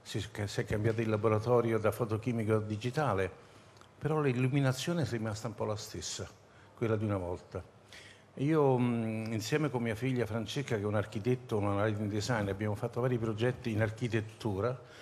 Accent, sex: native, male